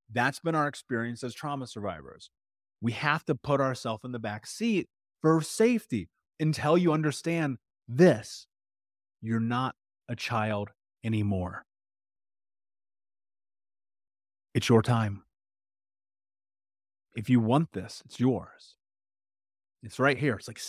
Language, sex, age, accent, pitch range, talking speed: English, male, 30-49, American, 100-130 Hz, 120 wpm